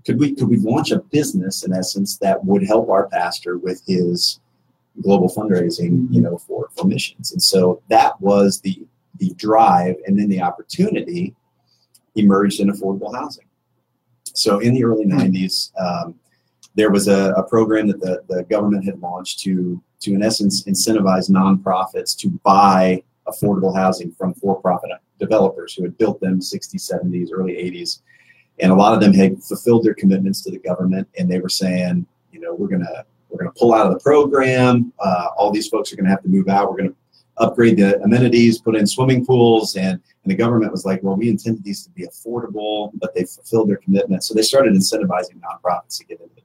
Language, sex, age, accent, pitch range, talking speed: English, male, 30-49, American, 95-115 Hz, 200 wpm